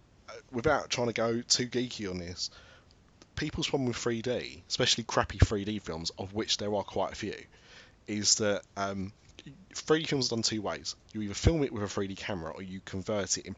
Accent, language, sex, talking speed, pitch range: British, English, male, 200 wpm, 95-110 Hz